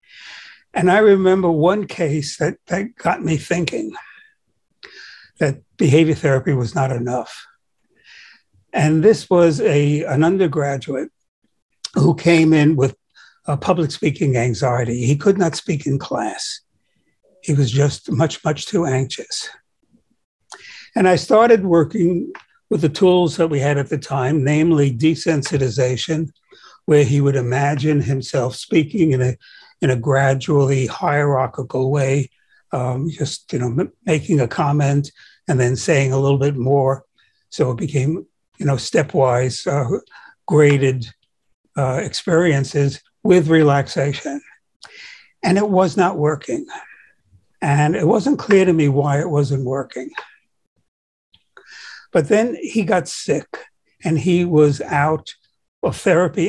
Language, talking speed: English, 125 wpm